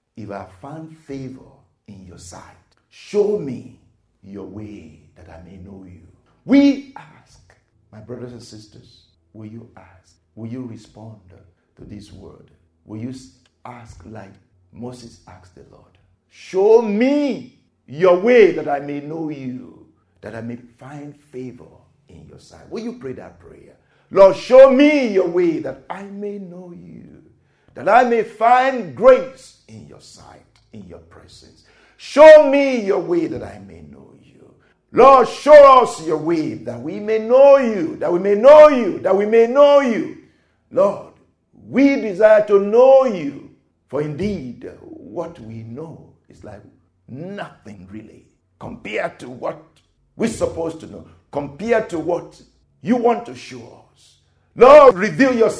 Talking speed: 155 wpm